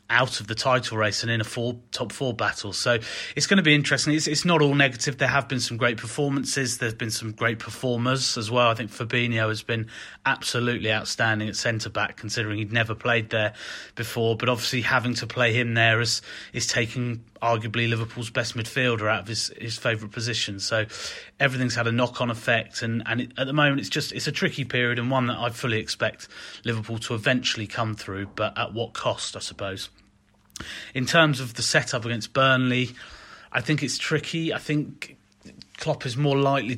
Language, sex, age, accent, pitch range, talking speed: English, male, 30-49, British, 110-125 Hz, 195 wpm